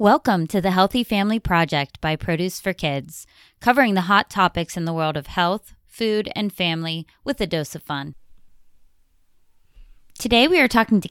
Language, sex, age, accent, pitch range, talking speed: English, female, 20-39, American, 165-215 Hz, 175 wpm